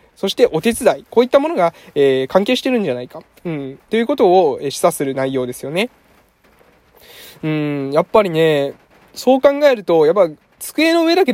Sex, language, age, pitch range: male, Japanese, 20-39, 155-220 Hz